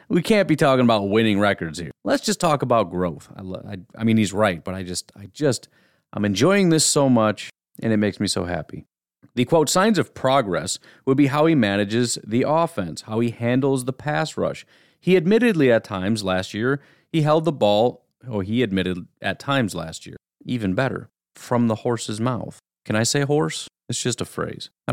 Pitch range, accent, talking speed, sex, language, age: 100-140 Hz, American, 210 wpm, male, English, 30-49